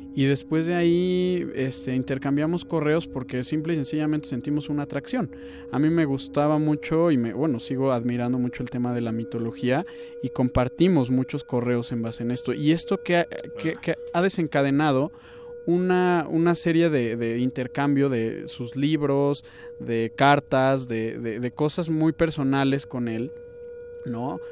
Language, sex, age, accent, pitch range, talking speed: Spanish, male, 20-39, Mexican, 120-155 Hz, 160 wpm